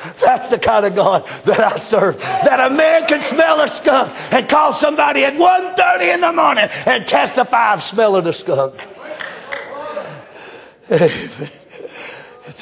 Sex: male